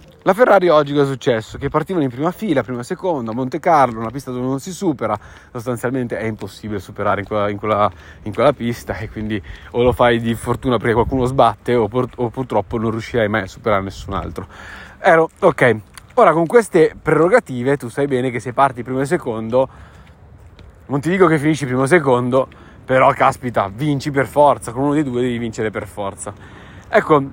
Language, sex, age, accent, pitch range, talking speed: Italian, male, 30-49, native, 110-150 Hz, 200 wpm